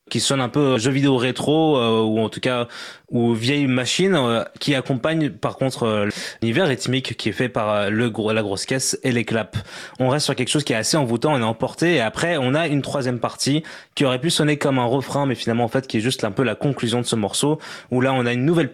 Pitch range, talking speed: 120-145 Hz, 255 wpm